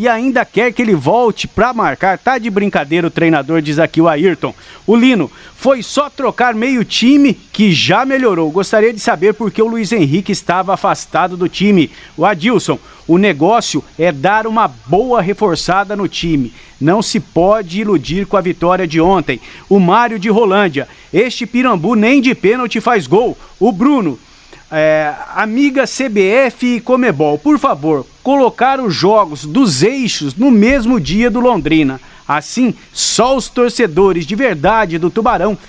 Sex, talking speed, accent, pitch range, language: male, 165 wpm, Brazilian, 175-240 Hz, Portuguese